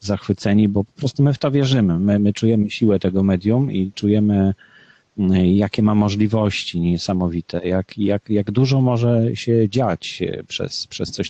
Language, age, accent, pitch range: Polish, 40-59, native, 95-115 Hz